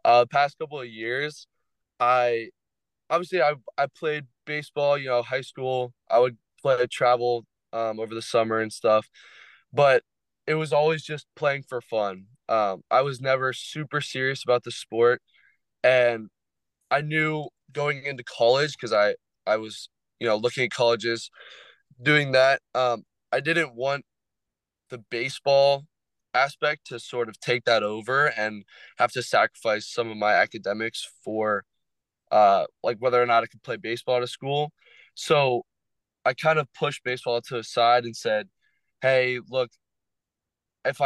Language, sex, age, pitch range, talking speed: English, male, 20-39, 115-140 Hz, 155 wpm